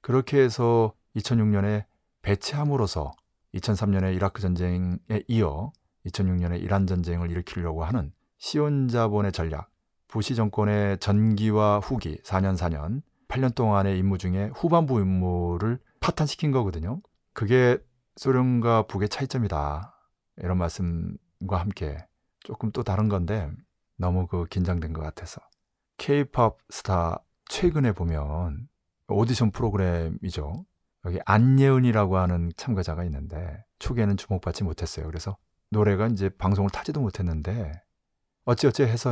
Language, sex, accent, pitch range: Korean, male, native, 85-115 Hz